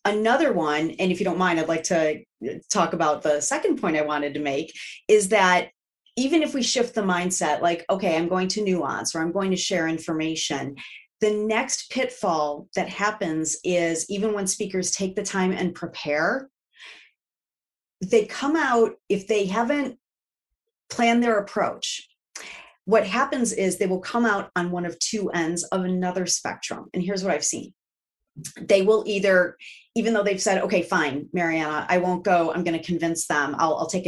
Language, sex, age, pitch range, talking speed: English, female, 30-49, 170-215 Hz, 180 wpm